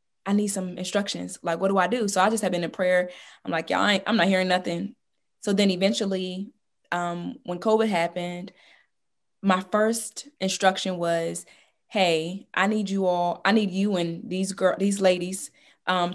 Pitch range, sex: 180-210 Hz, female